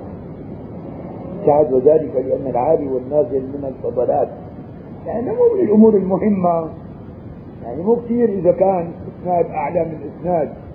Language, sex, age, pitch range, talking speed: Arabic, male, 50-69, 145-190 Hz, 110 wpm